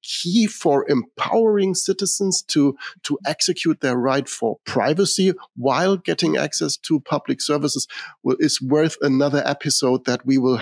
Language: English